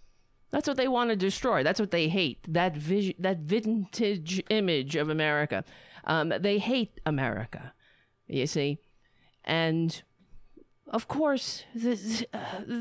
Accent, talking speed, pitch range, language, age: American, 125 wpm, 135-210 Hz, English, 50-69